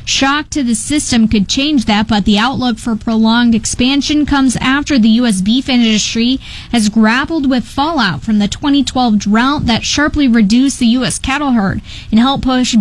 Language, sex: English, female